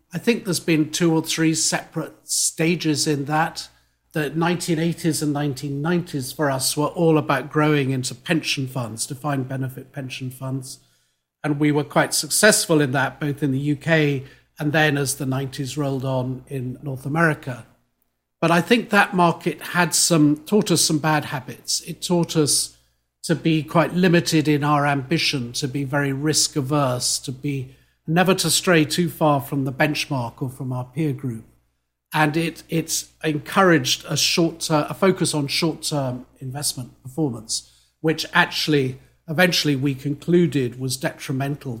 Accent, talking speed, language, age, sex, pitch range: British, 160 wpm, English, 50-69, male, 130-160 Hz